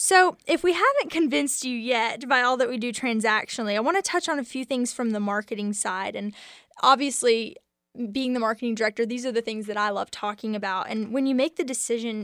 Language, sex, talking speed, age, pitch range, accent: English, female, 225 wpm, 10-29, 215-255 Hz, American